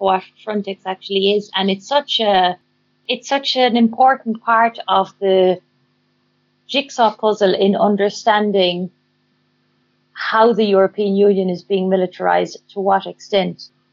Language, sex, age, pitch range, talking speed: English, female, 30-49, 190-225 Hz, 125 wpm